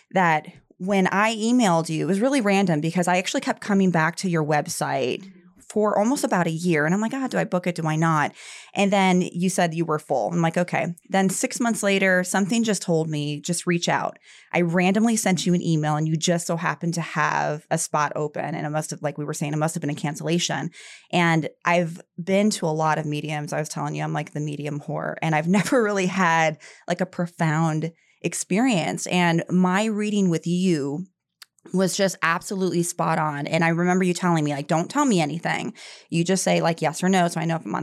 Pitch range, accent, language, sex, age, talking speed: 155-185 Hz, American, English, female, 20-39, 230 wpm